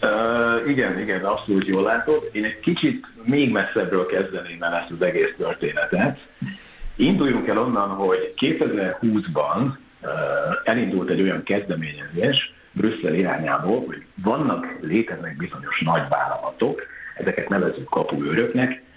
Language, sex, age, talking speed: Hungarian, male, 50-69, 115 wpm